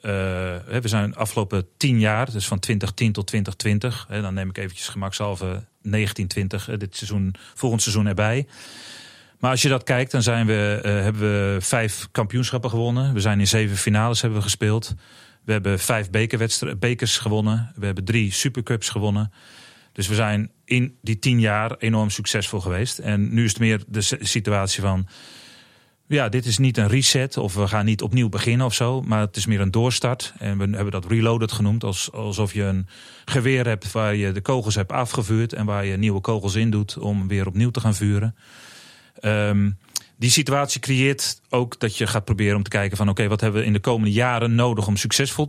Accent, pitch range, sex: Dutch, 105-120 Hz, male